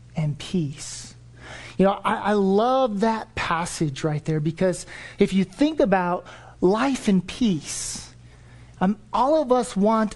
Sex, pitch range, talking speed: male, 175-250 Hz, 140 wpm